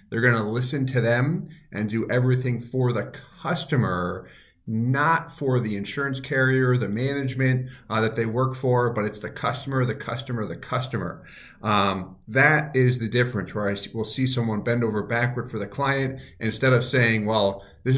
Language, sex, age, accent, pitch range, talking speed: English, male, 40-59, American, 110-135 Hz, 175 wpm